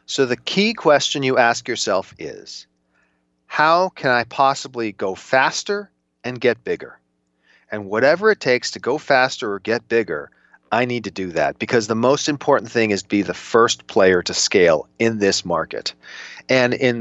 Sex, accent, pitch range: male, American, 105-140 Hz